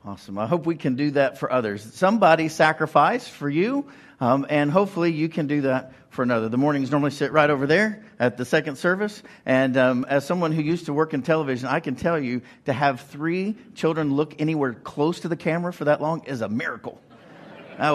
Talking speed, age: 215 wpm, 50-69